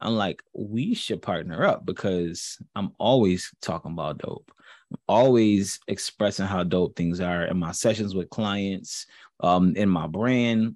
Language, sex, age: English, male, 20-39